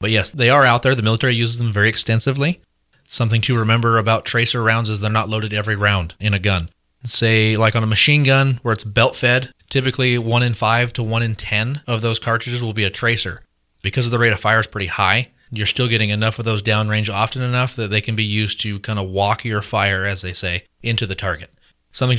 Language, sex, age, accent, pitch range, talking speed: English, male, 30-49, American, 105-125 Hz, 240 wpm